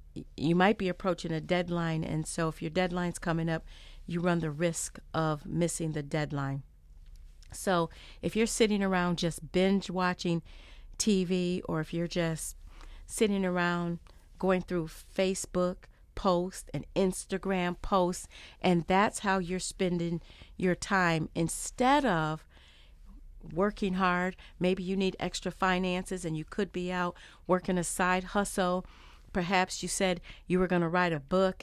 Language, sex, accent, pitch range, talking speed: English, female, American, 155-190 Hz, 150 wpm